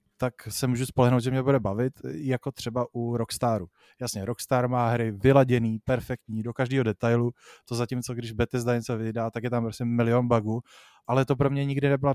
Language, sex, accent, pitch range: Czech, male, native, 115-130 Hz